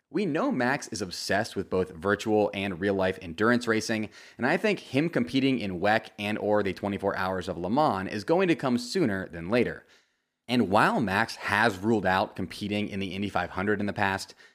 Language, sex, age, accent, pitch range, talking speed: English, male, 30-49, American, 95-120 Hz, 200 wpm